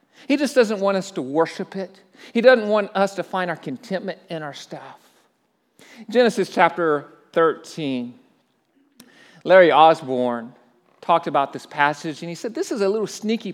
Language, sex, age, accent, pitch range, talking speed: English, male, 40-59, American, 145-195 Hz, 160 wpm